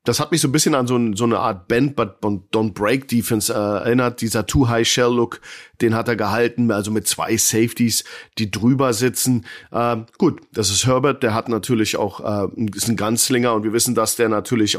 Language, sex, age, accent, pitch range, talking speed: German, male, 40-59, German, 110-140 Hz, 190 wpm